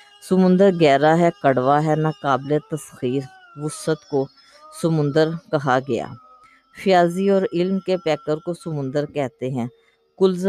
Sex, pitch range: female, 150-190 Hz